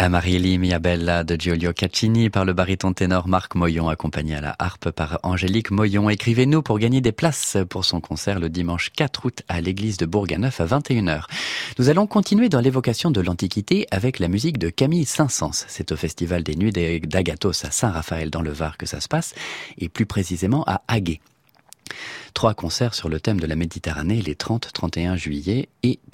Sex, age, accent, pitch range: male, 30-49, French, 85-120 Hz